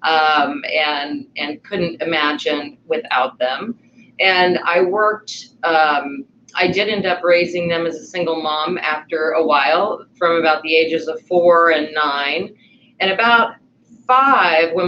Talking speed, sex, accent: 145 wpm, female, American